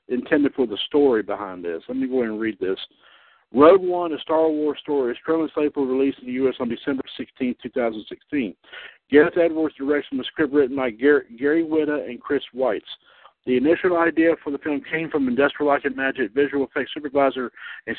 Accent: American